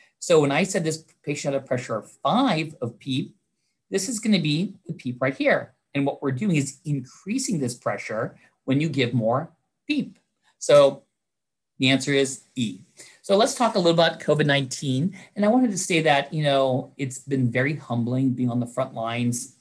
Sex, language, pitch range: male, English, 125-165 Hz